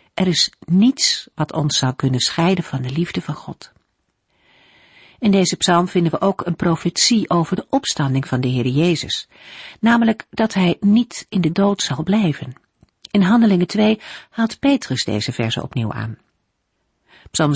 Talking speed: 160 wpm